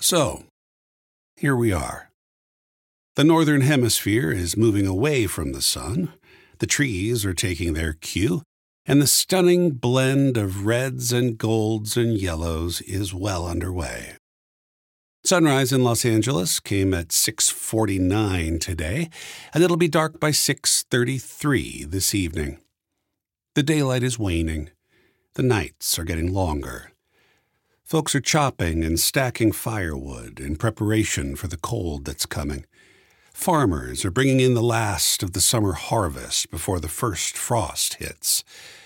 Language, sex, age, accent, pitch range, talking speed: English, male, 50-69, American, 90-135 Hz, 130 wpm